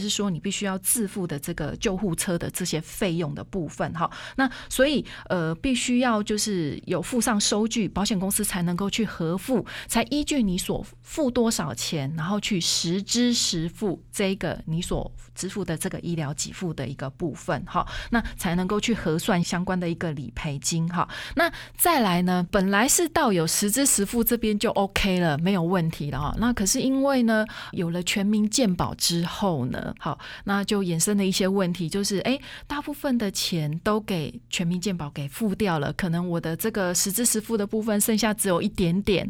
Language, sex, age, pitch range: Chinese, female, 30-49, 175-225 Hz